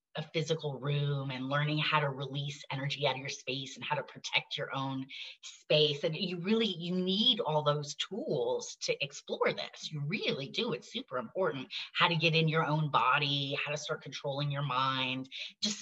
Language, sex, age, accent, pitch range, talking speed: English, female, 30-49, American, 135-185 Hz, 195 wpm